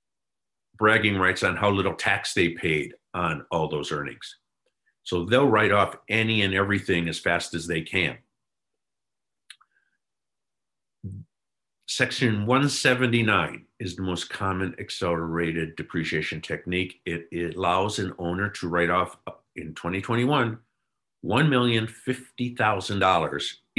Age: 50-69